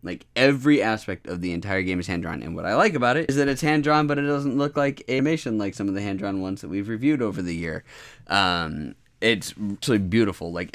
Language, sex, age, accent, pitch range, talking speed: English, male, 20-39, American, 90-115 Hz, 235 wpm